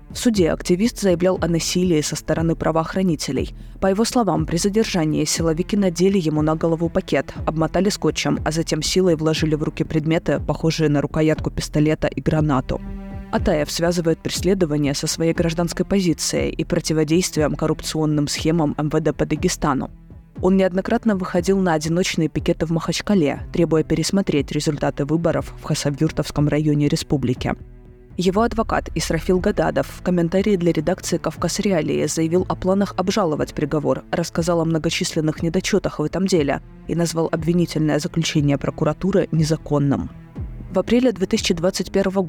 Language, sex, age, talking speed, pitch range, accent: Russian, female, 20-39, 135 wpm, 150-180 Hz, native